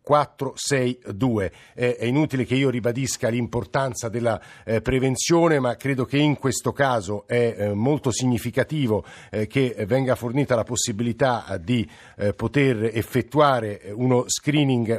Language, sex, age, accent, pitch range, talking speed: Italian, male, 50-69, native, 110-130 Hz, 110 wpm